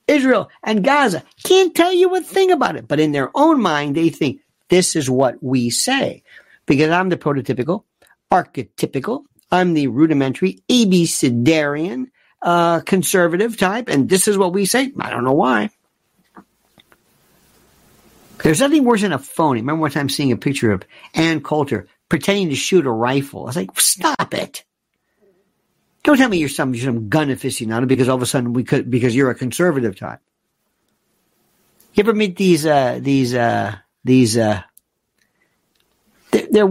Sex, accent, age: male, American, 50-69